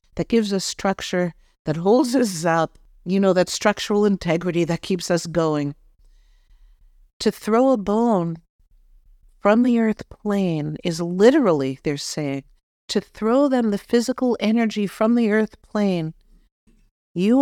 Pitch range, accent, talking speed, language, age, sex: 170-230 Hz, American, 140 wpm, English, 50-69, female